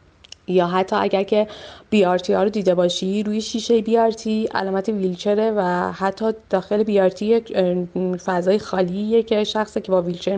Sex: female